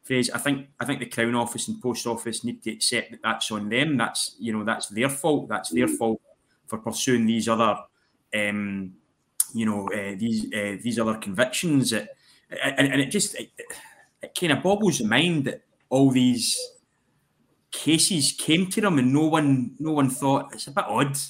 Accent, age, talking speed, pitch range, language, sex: British, 20-39, 190 wpm, 115-140 Hz, English, male